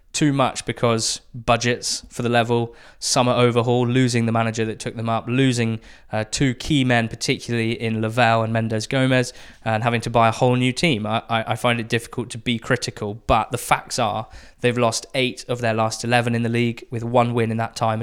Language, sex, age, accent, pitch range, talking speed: English, male, 20-39, British, 115-130 Hz, 210 wpm